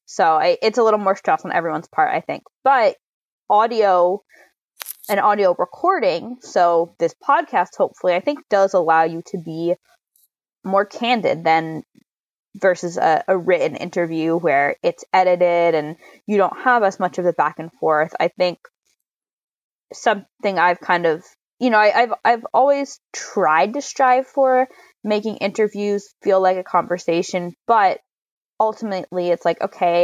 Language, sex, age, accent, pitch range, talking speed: English, female, 20-39, American, 170-225 Hz, 155 wpm